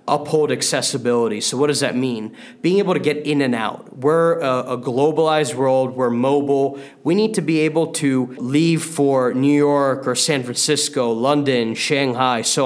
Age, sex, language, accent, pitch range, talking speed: 20-39, male, English, American, 125-145 Hz, 175 wpm